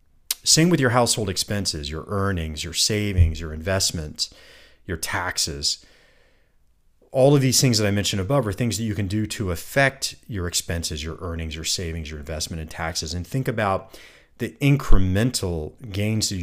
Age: 40-59